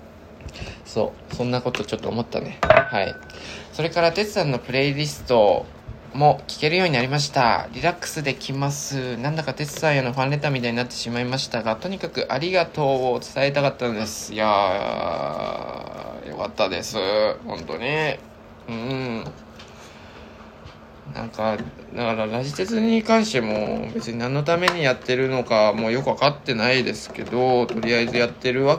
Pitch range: 115-150 Hz